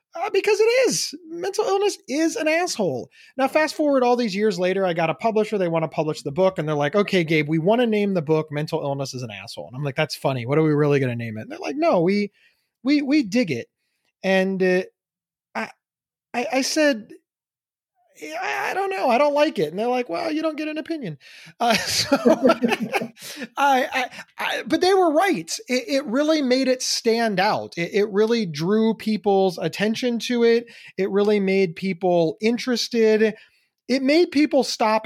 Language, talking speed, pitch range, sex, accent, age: English, 205 wpm, 180-260 Hz, male, American, 30-49